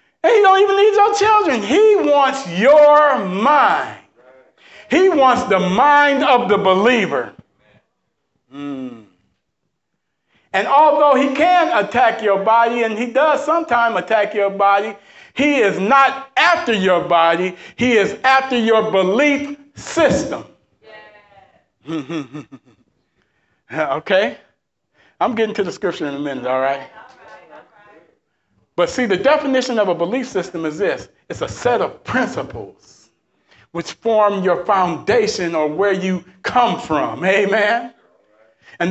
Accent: American